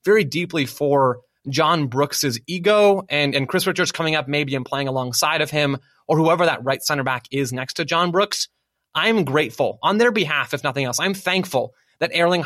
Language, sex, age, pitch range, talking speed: English, male, 20-39, 135-170 Hz, 195 wpm